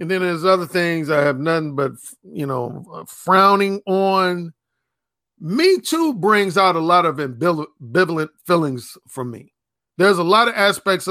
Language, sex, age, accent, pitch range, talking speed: English, male, 40-59, American, 140-195 Hz, 155 wpm